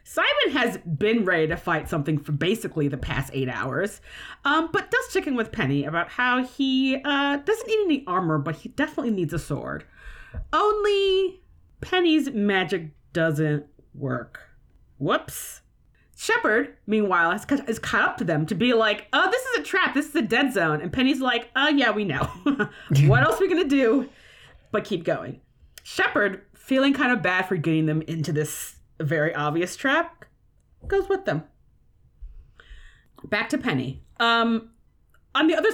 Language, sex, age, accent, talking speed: English, female, 30-49, American, 170 wpm